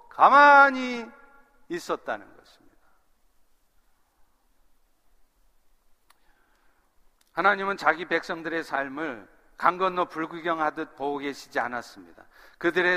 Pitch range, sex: 175-250 Hz, male